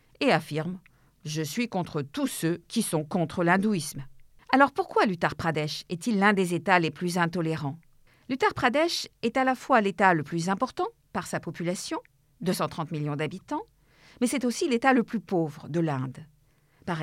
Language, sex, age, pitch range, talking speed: French, female, 50-69, 160-230 Hz, 175 wpm